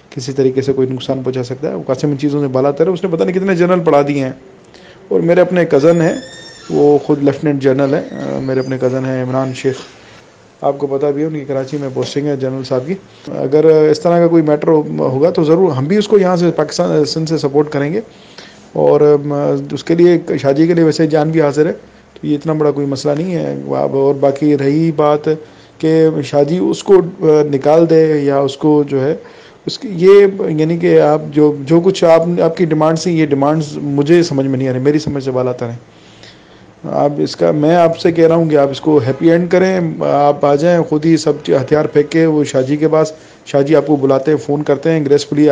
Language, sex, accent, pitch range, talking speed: English, male, Indian, 140-165 Hz, 200 wpm